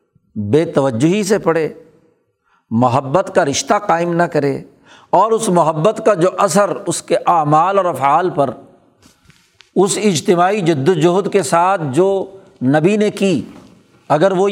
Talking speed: 135 wpm